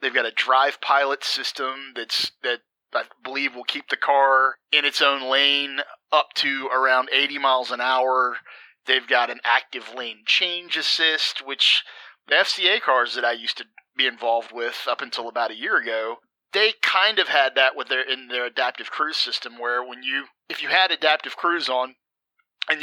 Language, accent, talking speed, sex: English, American, 185 wpm, male